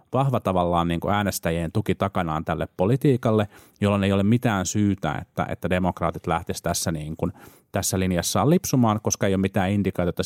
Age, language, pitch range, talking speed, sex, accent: 30-49, Finnish, 85-105 Hz, 160 wpm, male, native